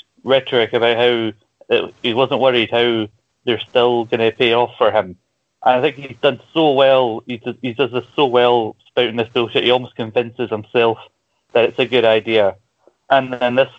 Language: English